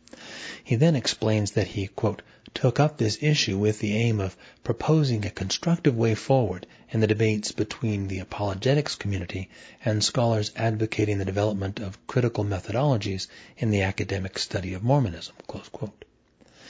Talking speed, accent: 150 wpm, American